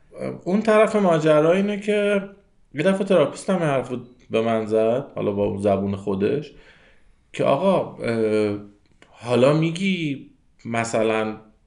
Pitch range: 95-140 Hz